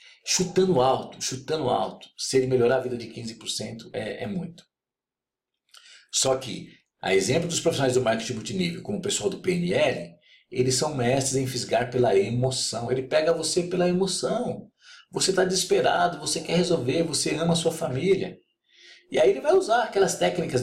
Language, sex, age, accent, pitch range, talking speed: Portuguese, male, 50-69, Brazilian, 155-215 Hz, 170 wpm